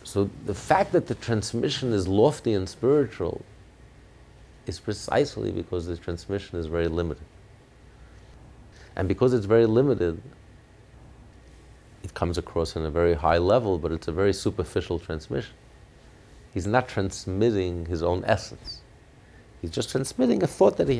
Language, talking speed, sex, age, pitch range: English, 145 wpm, male, 50-69, 90-115 Hz